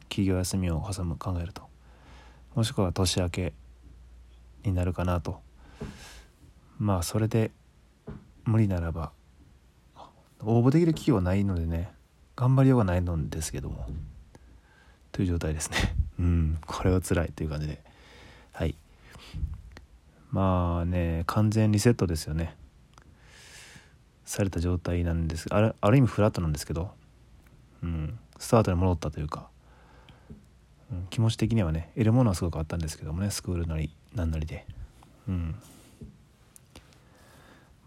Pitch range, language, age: 75-100 Hz, Japanese, 20-39